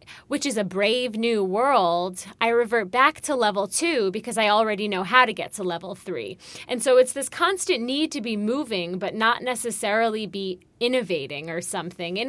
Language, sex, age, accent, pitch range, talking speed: English, female, 20-39, American, 185-245 Hz, 190 wpm